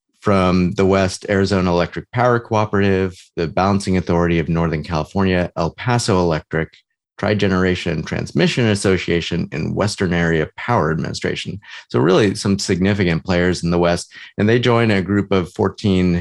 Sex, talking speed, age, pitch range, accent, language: male, 145 wpm, 30-49, 80-95 Hz, American, English